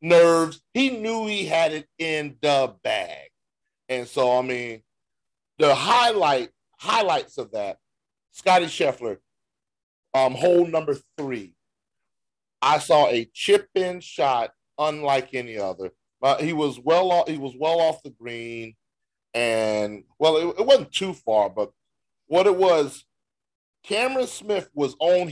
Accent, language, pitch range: American, English, 120-170 Hz